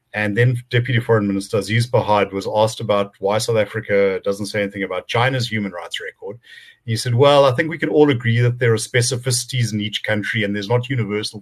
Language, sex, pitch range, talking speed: English, male, 100-125 Hz, 220 wpm